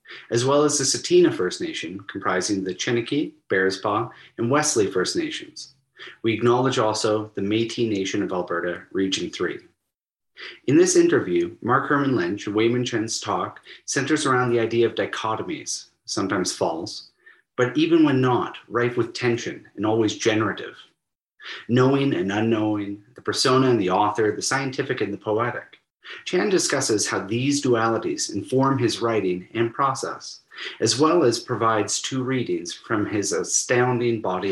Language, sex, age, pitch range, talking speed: English, male, 30-49, 105-135 Hz, 150 wpm